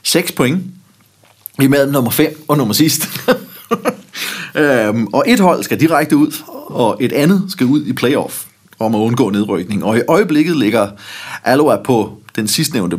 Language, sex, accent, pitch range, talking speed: Danish, male, native, 110-150 Hz, 160 wpm